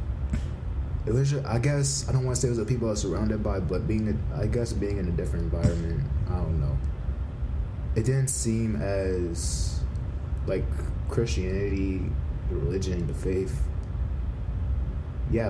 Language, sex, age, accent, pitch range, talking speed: English, male, 20-39, American, 75-95 Hz, 160 wpm